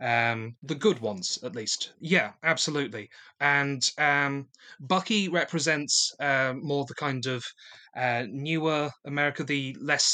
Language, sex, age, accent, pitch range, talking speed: English, male, 30-49, British, 125-155 Hz, 130 wpm